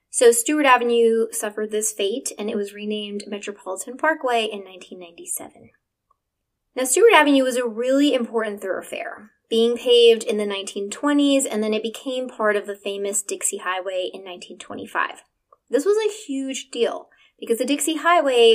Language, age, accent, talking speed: English, 20-39, American, 155 wpm